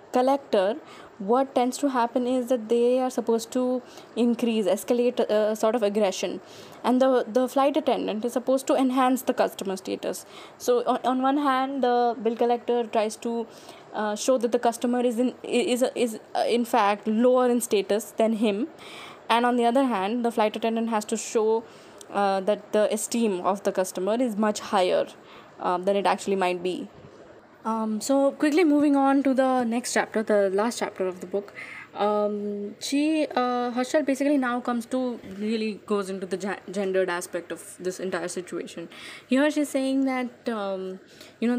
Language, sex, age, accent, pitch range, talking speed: English, female, 10-29, Indian, 195-250 Hz, 175 wpm